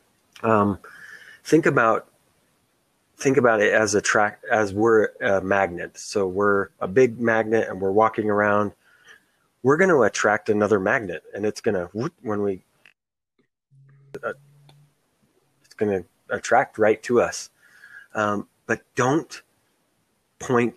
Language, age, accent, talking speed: English, 30-49, American, 125 wpm